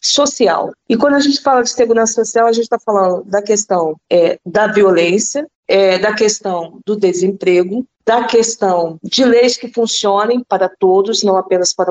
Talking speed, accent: 160 wpm, Brazilian